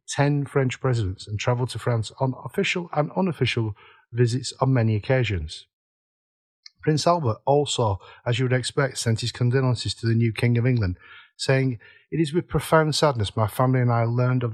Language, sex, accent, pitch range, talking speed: English, male, British, 115-130 Hz, 180 wpm